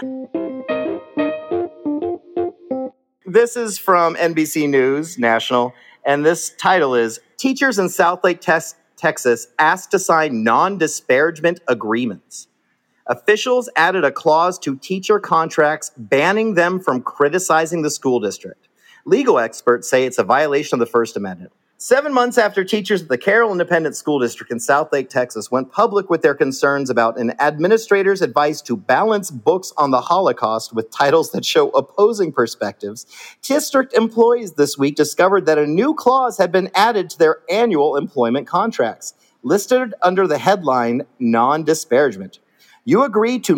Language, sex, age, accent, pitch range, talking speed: English, male, 40-59, American, 145-240 Hz, 145 wpm